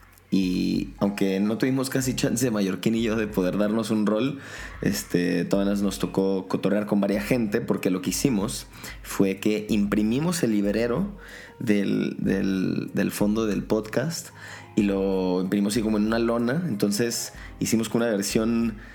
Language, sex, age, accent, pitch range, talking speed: Spanish, male, 20-39, Mexican, 100-115 Hz, 160 wpm